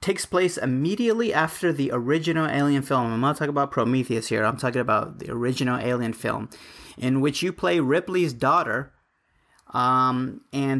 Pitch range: 130-175 Hz